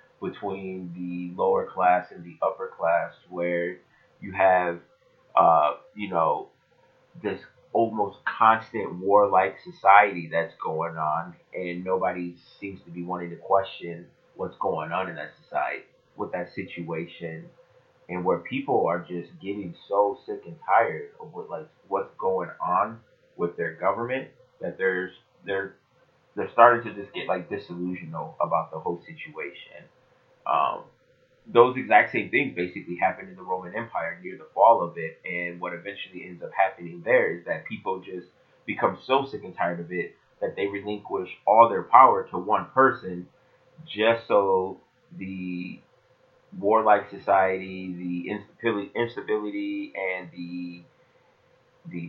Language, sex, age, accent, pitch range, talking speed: English, male, 30-49, American, 90-110 Hz, 145 wpm